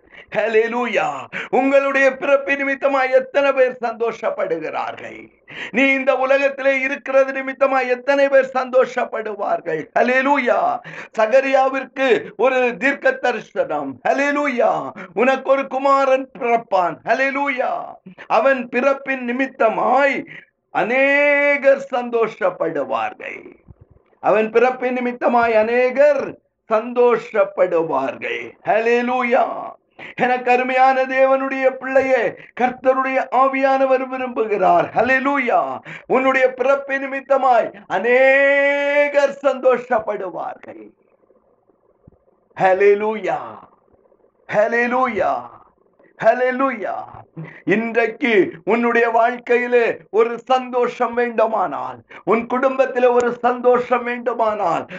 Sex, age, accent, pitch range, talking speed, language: male, 50-69, native, 240-275 Hz, 45 wpm, Tamil